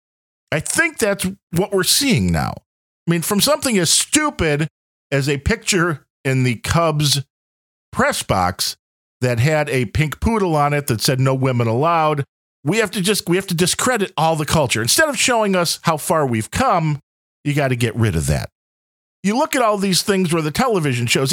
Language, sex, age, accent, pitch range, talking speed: English, male, 50-69, American, 125-185 Hz, 195 wpm